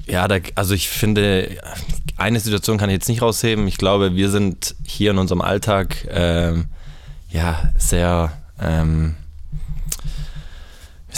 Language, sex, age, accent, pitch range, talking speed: German, male, 20-39, German, 85-105 Hz, 135 wpm